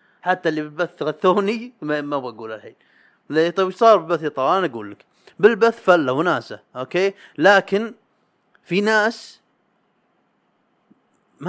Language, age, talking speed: Arabic, 30-49, 110 wpm